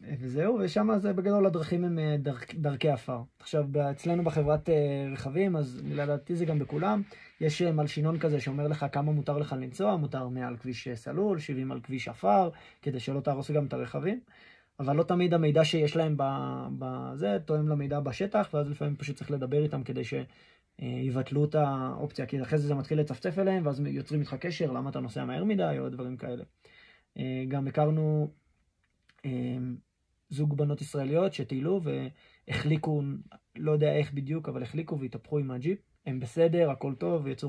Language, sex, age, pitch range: Hebrew, male, 20-39, 135-160 Hz